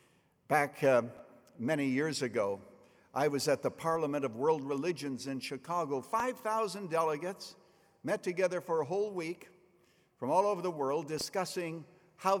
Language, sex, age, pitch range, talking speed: English, male, 60-79, 125-190 Hz, 145 wpm